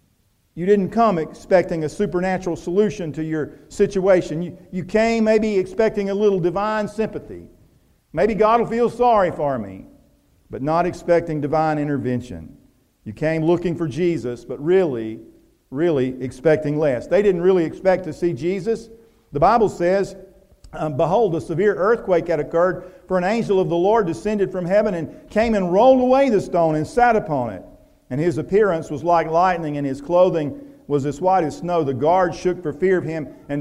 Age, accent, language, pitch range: 50-69, American, English, 160-200 Hz